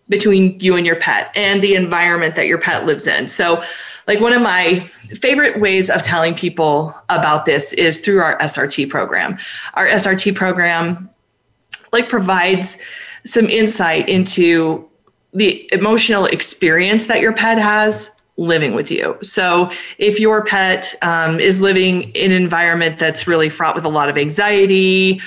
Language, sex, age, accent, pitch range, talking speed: English, female, 30-49, American, 165-210 Hz, 155 wpm